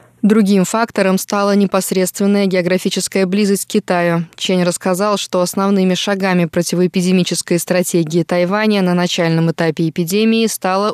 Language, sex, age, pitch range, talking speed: Russian, female, 20-39, 175-205 Hz, 115 wpm